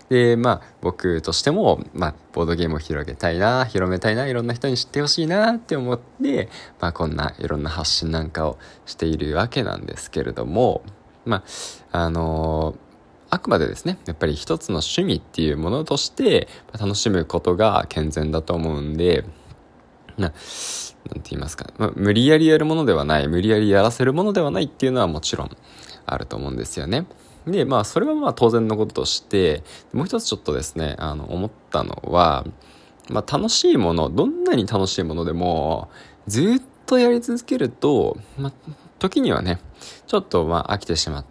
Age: 20-39